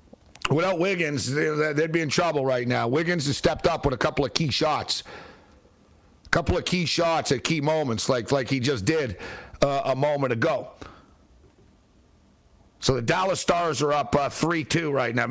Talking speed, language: 175 wpm, English